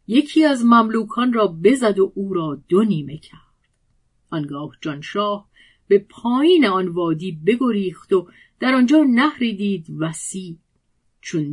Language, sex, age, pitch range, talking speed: Persian, female, 40-59, 170-225 Hz, 125 wpm